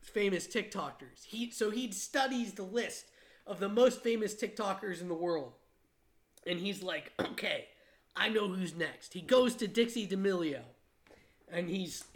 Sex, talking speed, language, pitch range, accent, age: male, 150 wpm, English, 200-285 Hz, American, 30-49